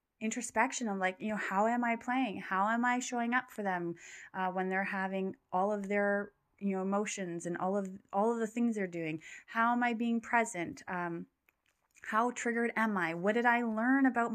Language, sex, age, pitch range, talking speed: English, female, 20-39, 175-235 Hz, 210 wpm